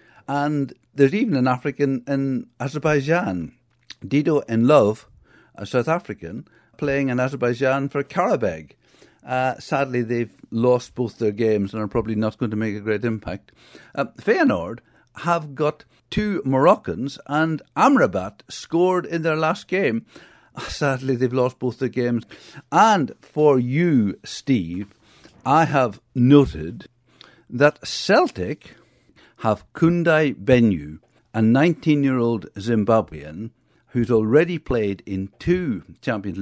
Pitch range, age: 110-145 Hz, 60-79